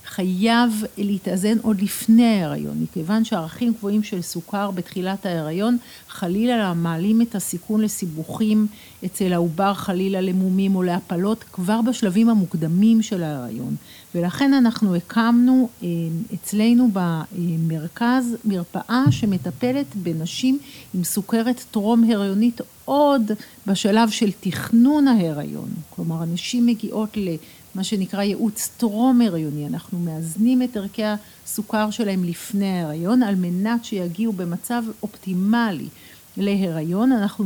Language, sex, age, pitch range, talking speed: Hebrew, female, 50-69, 180-230 Hz, 110 wpm